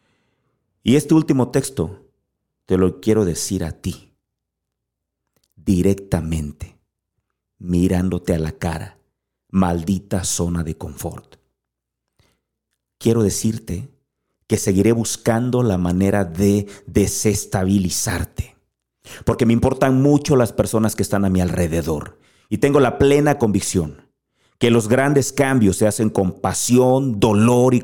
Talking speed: 115 wpm